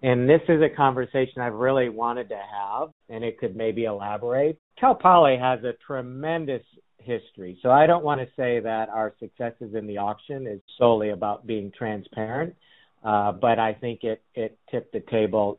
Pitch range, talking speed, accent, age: 105-130 Hz, 180 wpm, American, 50-69